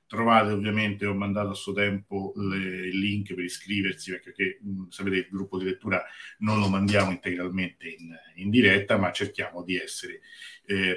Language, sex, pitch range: Italian, male, 95-120 Hz